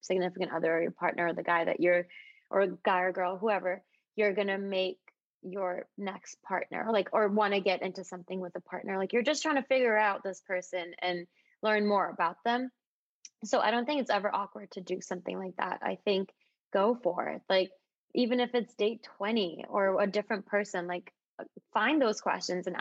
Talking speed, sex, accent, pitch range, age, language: 210 wpm, female, American, 185-220 Hz, 20-39, English